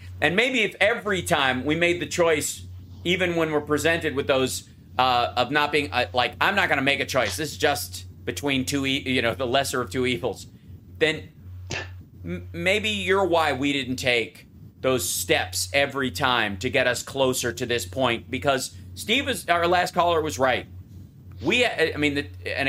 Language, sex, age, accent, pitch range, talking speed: English, male, 40-59, American, 105-150 Hz, 180 wpm